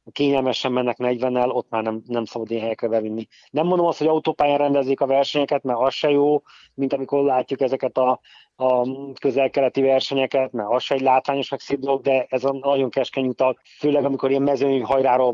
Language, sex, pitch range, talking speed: Hungarian, male, 120-140 Hz, 185 wpm